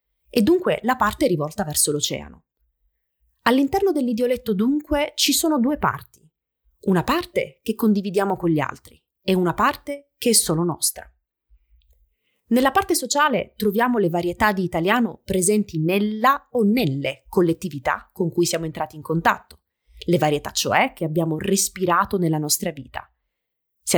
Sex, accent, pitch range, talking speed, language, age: female, native, 160-245 Hz, 145 wpm, Italian, 30-49